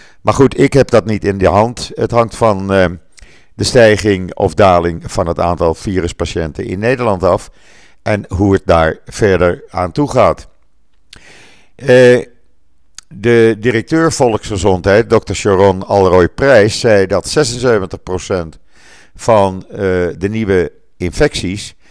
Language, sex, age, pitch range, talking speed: Dutch, male, 50-69, 85-110 Hz, 120 wpm